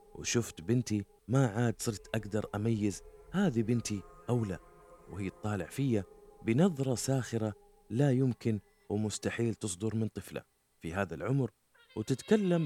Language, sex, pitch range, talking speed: Arabic, male, 105-140 Hz, 125 wpm